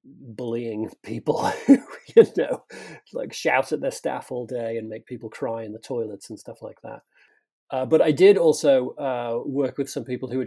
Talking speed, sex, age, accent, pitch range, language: 195 wpm, male, 30-49, British, 115-140 Hz, English